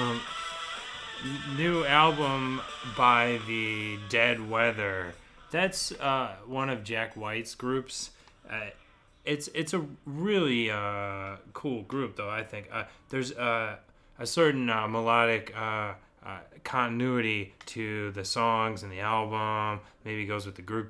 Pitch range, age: 100-120 Hz, 20-39